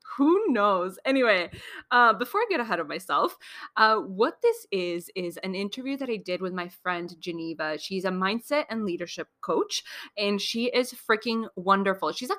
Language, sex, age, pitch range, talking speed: English, female, 20-39, 175-250 Hz, 180 wpm